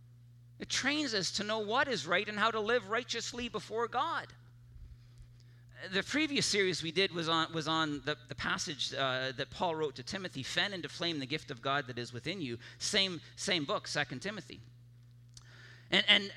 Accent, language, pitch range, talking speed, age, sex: American, English, 120-190 Hz, 185 wpm, 40-59, male